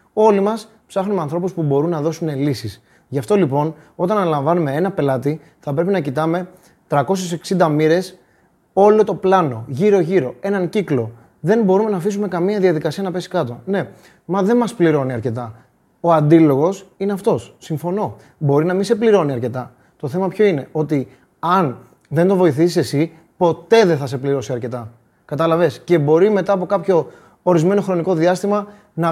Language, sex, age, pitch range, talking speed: Greek, male, 30-49, 150-190 Hz, 165 wpm